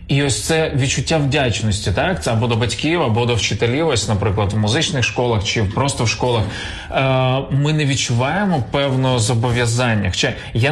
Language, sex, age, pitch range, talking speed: Ukrainian, male, 30-49, 110-130 Hz, 170 wpm